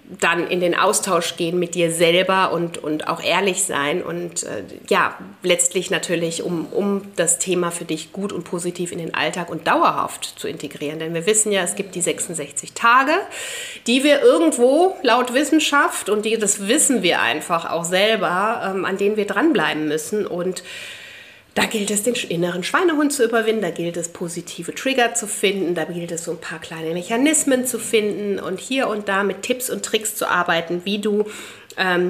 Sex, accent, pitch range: female, German, 175-220 Hz